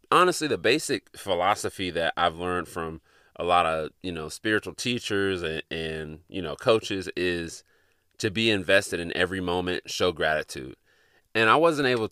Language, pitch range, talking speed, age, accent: English, 90-110 Hz, 165 wpm, 30-49, American